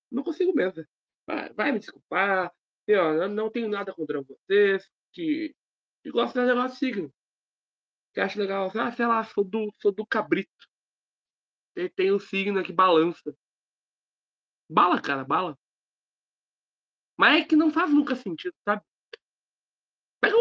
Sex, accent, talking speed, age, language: male, Brazilian, 150 wpm, 20-39, Portuguese